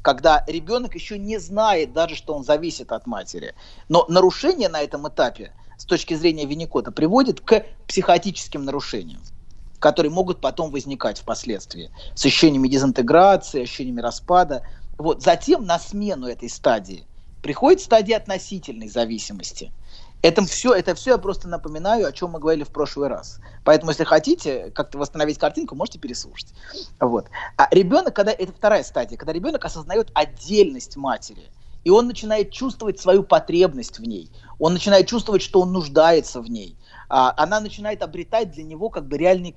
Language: Russian